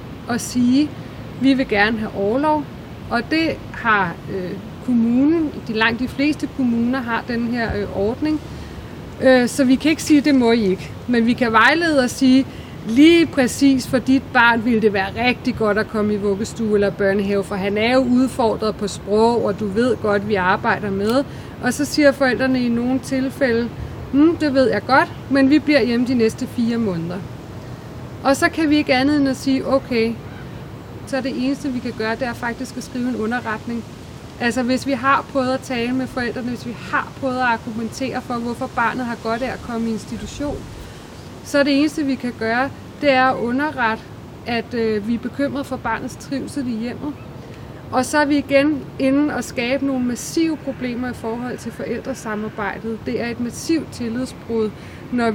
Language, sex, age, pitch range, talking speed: English, female, 30-49, 220-270 Hz, 190 wpm